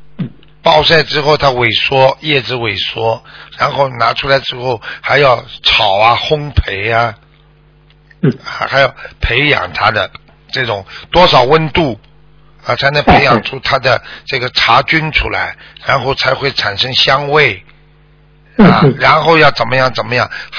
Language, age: Chinese, 50-69